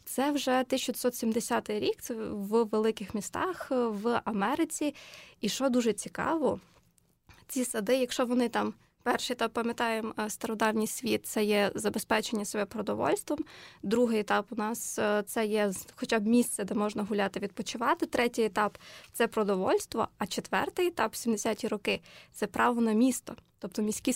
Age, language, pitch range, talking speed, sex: 20-39, Ukrainian, 215-255 Hz, 140 wpm, female